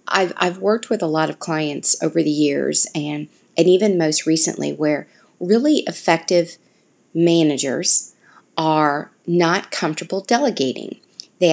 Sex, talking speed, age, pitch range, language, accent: female, 130 wpm, 40-59, 155-185 Hz, English, American